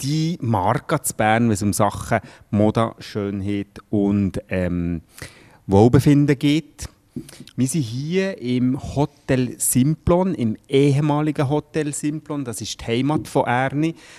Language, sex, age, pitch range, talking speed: German, male, 30-49, 110-145 Hz, 120 wpm